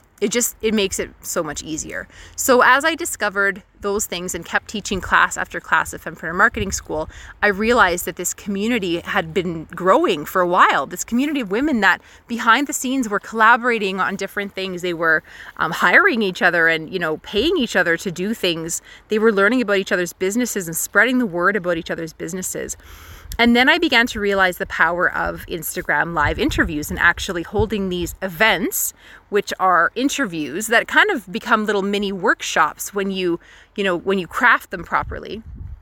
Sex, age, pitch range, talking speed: female, 30-49, 175-225 Hz, 190 wpm